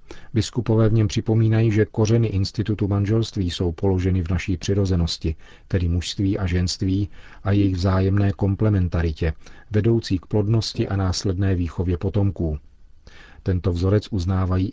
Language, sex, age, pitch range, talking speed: Czech, male, 40-59, 85-100 Hz, 125 wpm